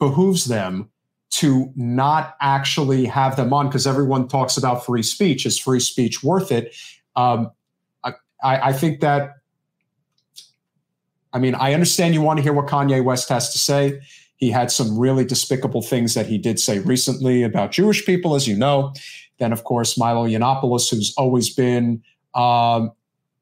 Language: English